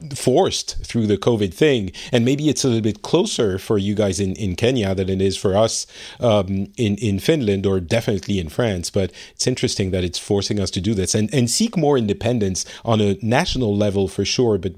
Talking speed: 215 wpm